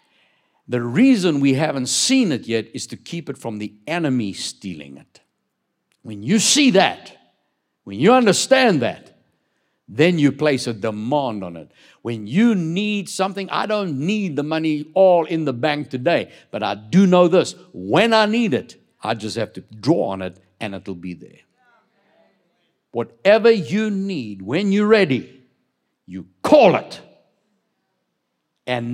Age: 60-79